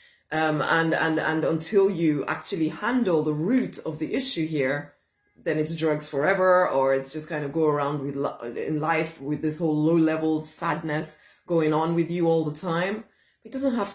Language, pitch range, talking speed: English, 155-190 Hz, 190 wpm